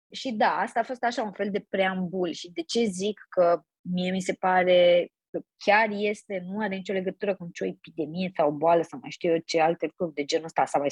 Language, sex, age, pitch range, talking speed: Romanian, female, 20-39, 175-210 Hz, 240 wpm